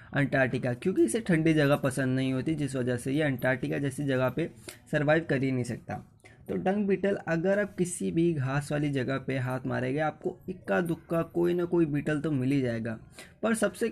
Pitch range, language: 130-170 Hz, Hindi